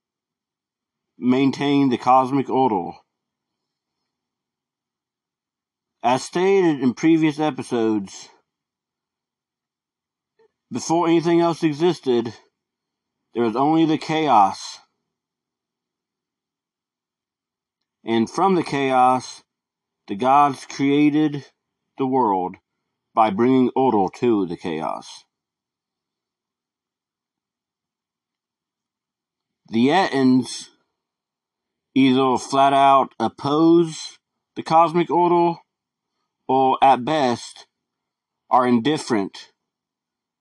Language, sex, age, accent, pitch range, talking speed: English, male, 50-69, American, 125-160 Hz, 70 wpm